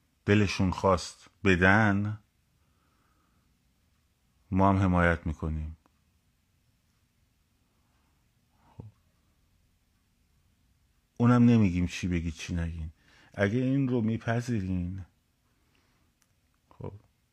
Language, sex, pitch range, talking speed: Persian, male, 85-115 Hz, 65 wpm